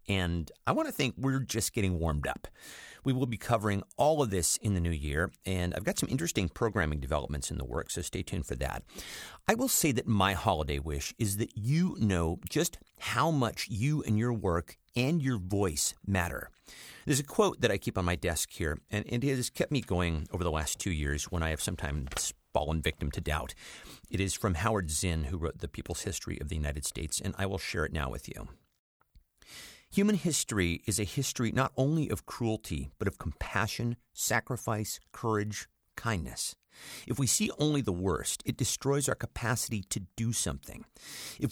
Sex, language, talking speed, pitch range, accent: male, English, 200 wpm, 85-125 Hz, American